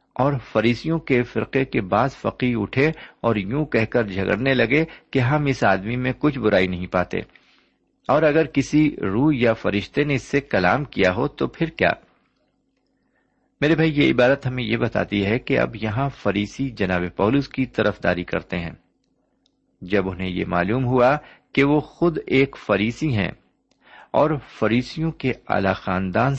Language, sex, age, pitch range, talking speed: Urdu, male, 50-69, 100-145 Hz, 165 wpm